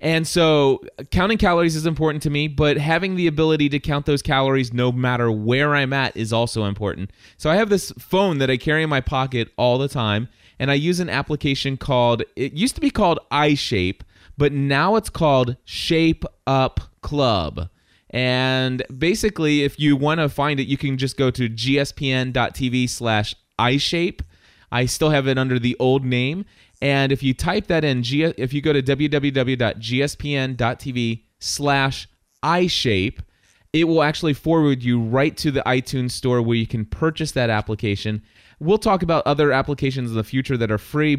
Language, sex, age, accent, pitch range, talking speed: English, male, 20-39, American, 120-150 Hz, 175 wpm